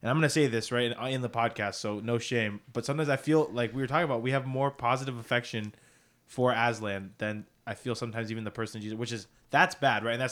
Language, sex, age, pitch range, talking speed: English, male, 20-39, 110-125 Hz, 250 wpm